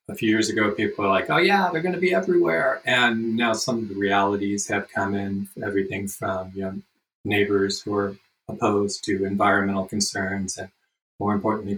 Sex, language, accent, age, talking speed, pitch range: male, English, American, 50-69, 190 wpm, 100-120 Hz